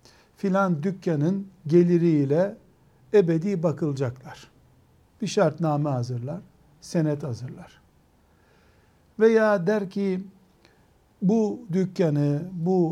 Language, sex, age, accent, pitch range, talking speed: Turkish, male, 60-79, native, 145-200 Hz, 75 wpm